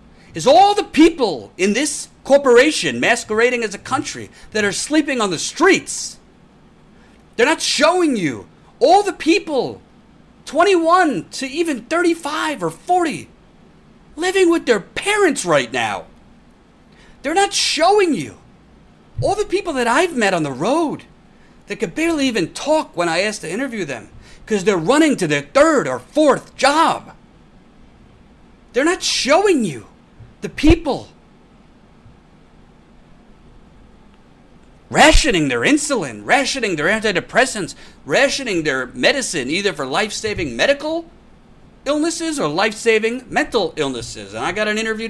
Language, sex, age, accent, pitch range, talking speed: English, male, 40-59, American, 210-330 Hz, 130 wpm